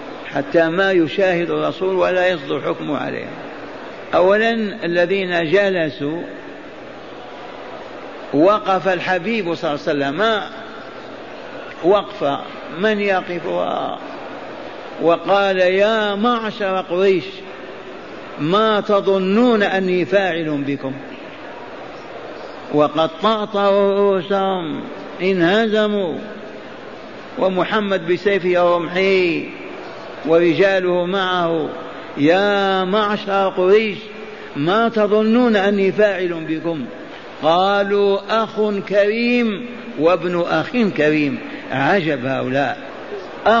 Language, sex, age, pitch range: Arabic, male, 50-69, 170-205 Hz